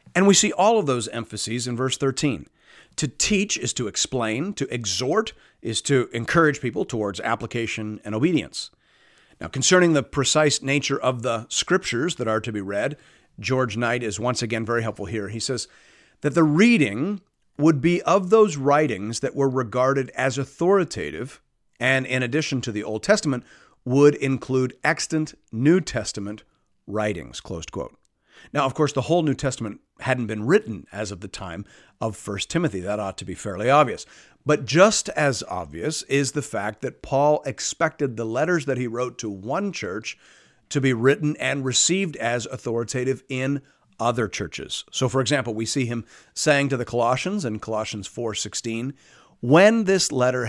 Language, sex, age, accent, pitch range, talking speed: English, male, 40-59, American, 115-145 Hz, 170 wpm